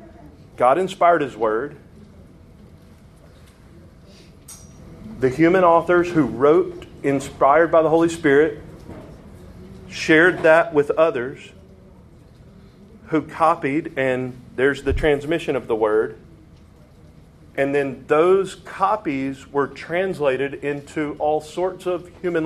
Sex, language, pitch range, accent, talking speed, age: male, English, 135-175 Hz, American, 100 wpm, 40-59